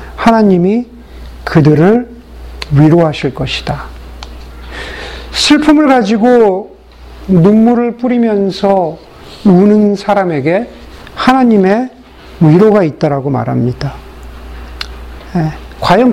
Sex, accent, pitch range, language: male, native, 175-240 Hz, Korean